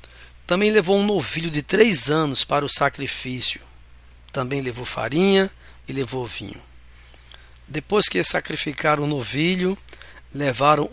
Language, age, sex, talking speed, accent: Portuguese, 60-79, male, 120 wpm, Brazilian